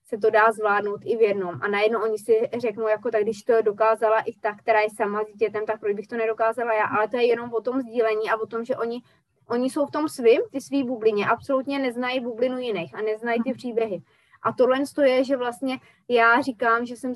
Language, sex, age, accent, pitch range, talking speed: Czech, female, 20-39, native, 215-255 Hz, 235 wpm